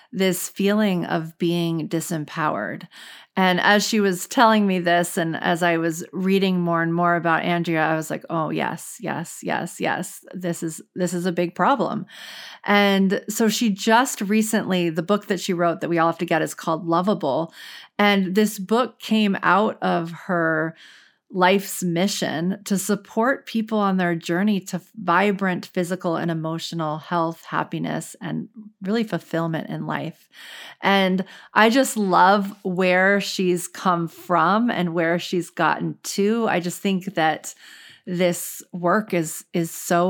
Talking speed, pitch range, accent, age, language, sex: 155 wpm, 170-200 Hz, American, 40-59, English, female